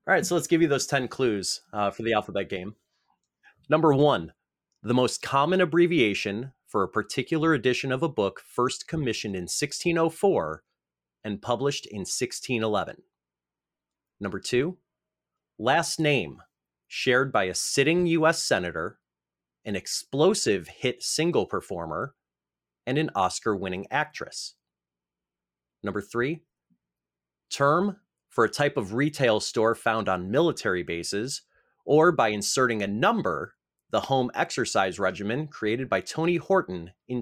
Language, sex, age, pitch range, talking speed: English, male, 30-49, 90-150 Hz, 130 wpm